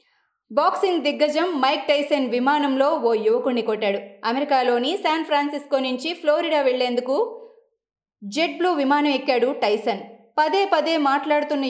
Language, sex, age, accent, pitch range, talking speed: Telugu, female, 20-39, native, 235-305 Hz, 115 wpm